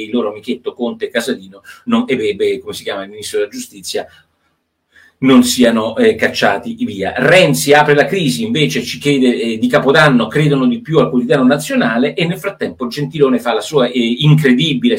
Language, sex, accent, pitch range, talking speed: Italian, male, native, 140-230 Hz, 170 wpm